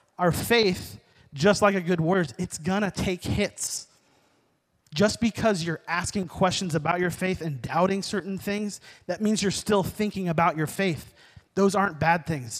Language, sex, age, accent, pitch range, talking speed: English, male, 30-49, American, 140-185 Hz, 170 wpm